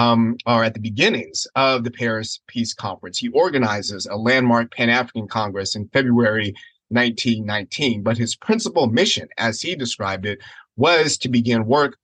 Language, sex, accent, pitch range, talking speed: English, male, American, 115-135 Hz, 155 wpm